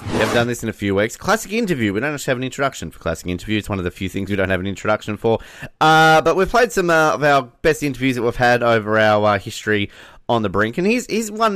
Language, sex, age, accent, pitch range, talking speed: English, male, 30-49, Australian, 95-135 Hz, 280 wpm